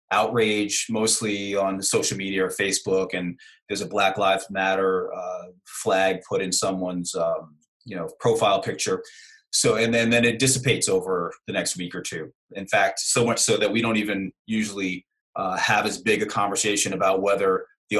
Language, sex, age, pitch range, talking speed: English, male, 30-49, 95-135 Hz, 180 wpm